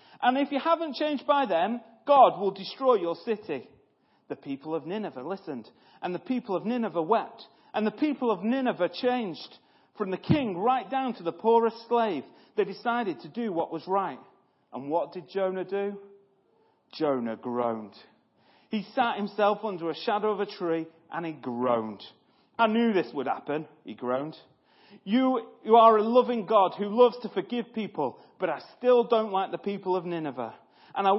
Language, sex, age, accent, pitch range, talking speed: English, male, 40-59, British, 155-225 Hz, 180 wpm